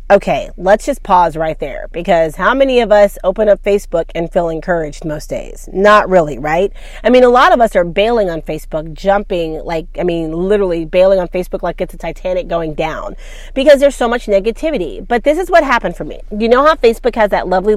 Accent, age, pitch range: American, 30-49, 180-235 Hz